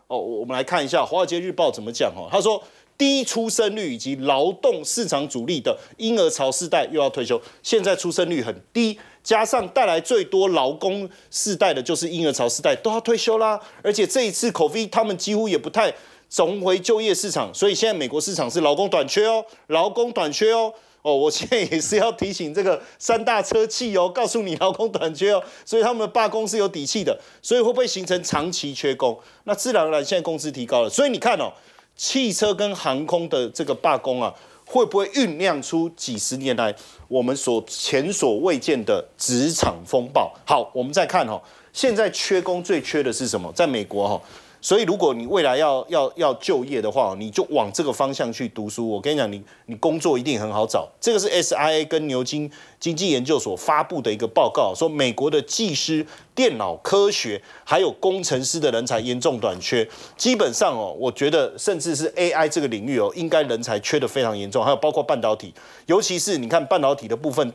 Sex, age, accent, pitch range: male, 30-49, native, 150-225 Hz